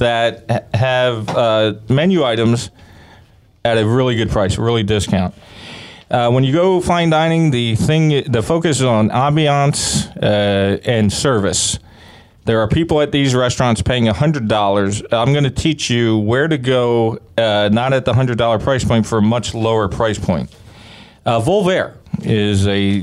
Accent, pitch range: American, 105-135 Hz